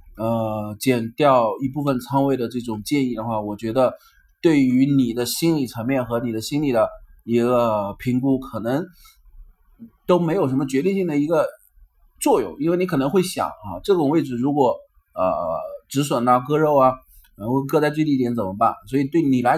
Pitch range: 115-150 Hz